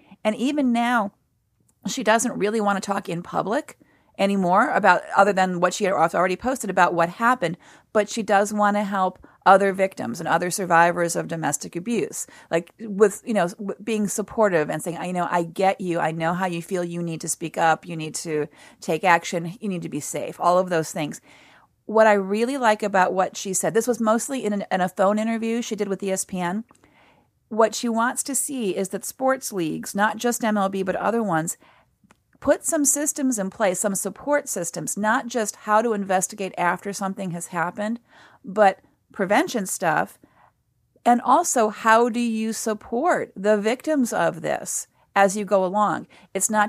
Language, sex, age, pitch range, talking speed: English, female, 40-59, 180-225 Hz, 185 wpm